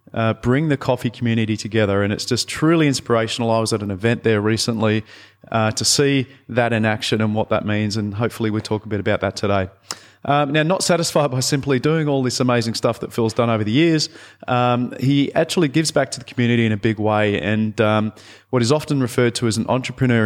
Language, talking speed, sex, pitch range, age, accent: English, 225 wpm, male, 110-130 Hz, 30-49, Australian